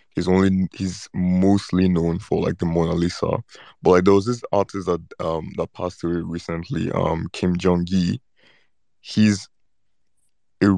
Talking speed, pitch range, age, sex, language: 155 wpm, 85-95 Hz, 20-39, male, English